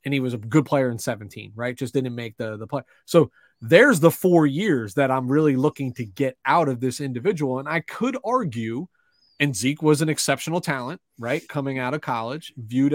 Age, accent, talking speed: 30-49, American, 215 wpm